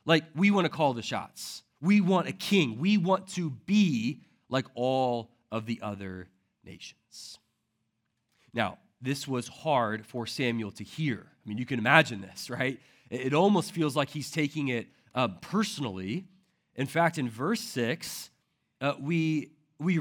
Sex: male